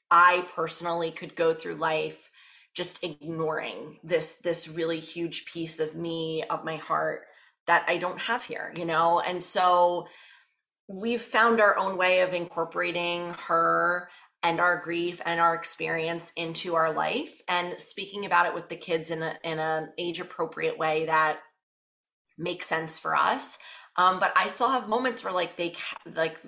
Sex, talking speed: female, 165 wpm